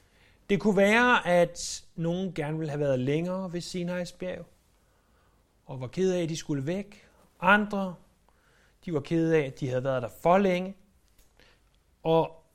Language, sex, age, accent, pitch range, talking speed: Danish, male, 60-79, native, 130-200 Hz, 160 wpm